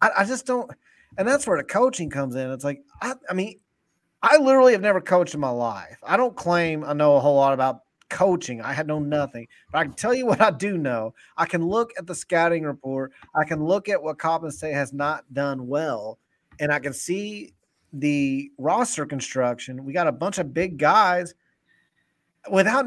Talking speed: 205 wpm